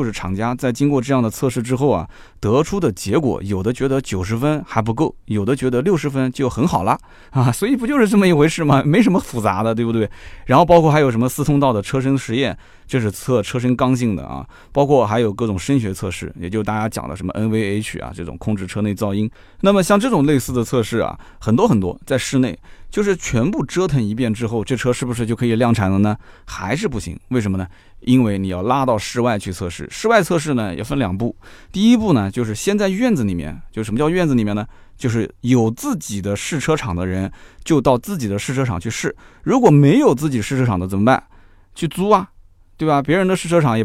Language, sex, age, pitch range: Chinese, male, 20-39, 100-135 Hz